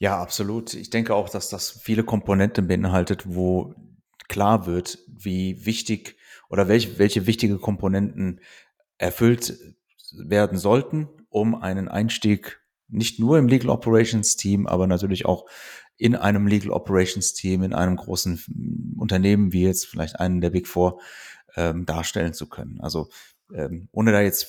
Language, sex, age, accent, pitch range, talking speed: German, male, 30-49, German, 90-105 Hz, 145 wpm